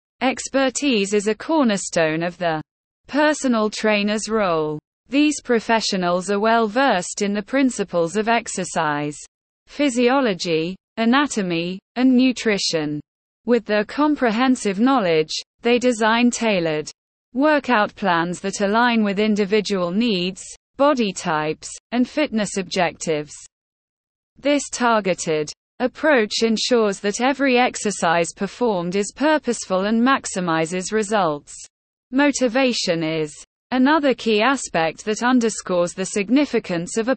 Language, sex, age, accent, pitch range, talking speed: English, female, 20-39, British, 175-250 Hz, 105 wpm